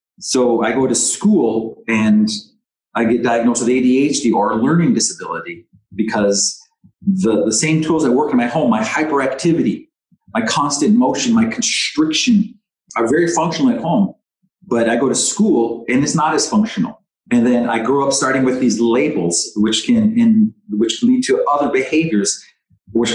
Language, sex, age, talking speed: English, male, 40-59, 170 wpm